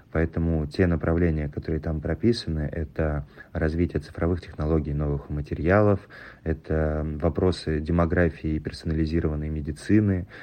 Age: 30-49